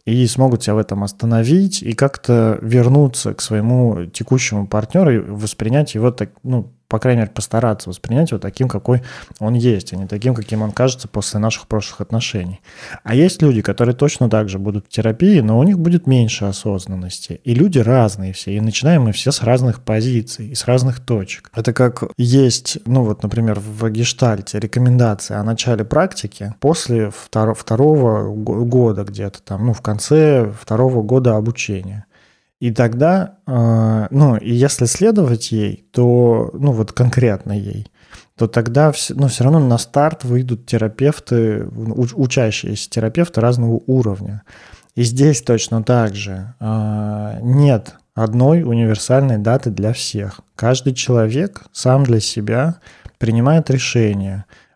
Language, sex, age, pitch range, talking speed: Russian, male, 20-39, 105-130 Hz, 150 wpm